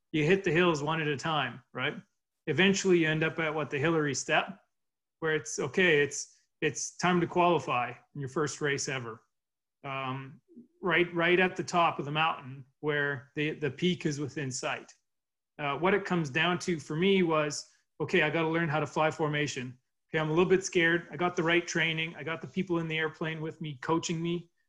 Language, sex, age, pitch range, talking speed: English, male, 30-49, 145-170 Hz, 210 wpm